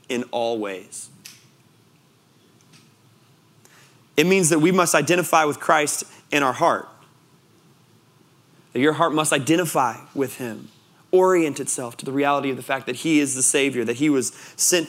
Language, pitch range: English, 120-150 Hz